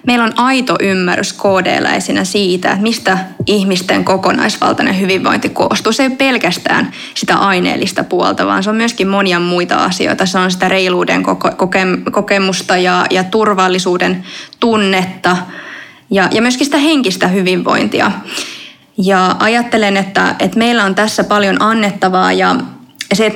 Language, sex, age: Finnish, female, 20-39